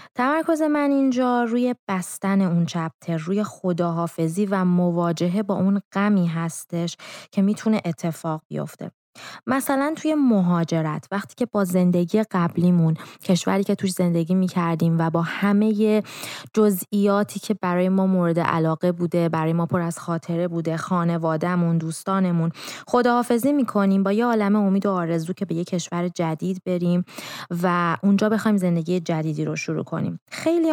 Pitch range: 170-215 Hz